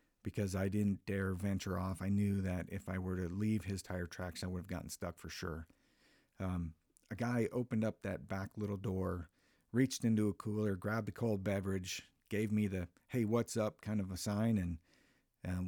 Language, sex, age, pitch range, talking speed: English, male, 50-69, 90-110 Hz, 205 wpm